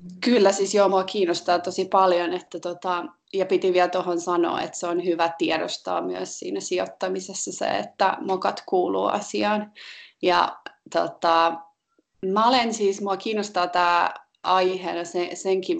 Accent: native